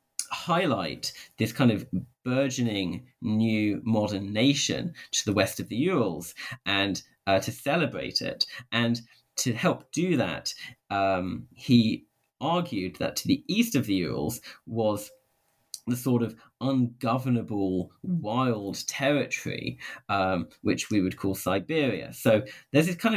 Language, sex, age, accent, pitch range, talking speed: English, male, 40-59, British, 100-135 Hz, 130 wpm